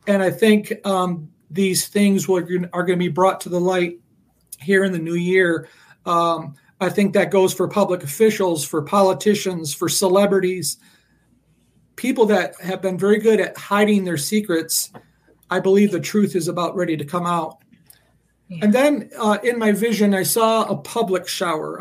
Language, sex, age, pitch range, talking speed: English, male, 40-59, 170-200 Hz, 175 wpm